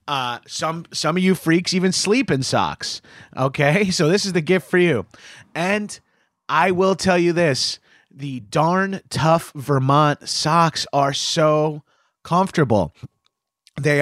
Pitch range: 130-170 Hz